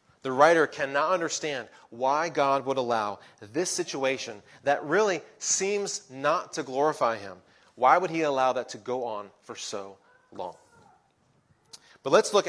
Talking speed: 150 wpm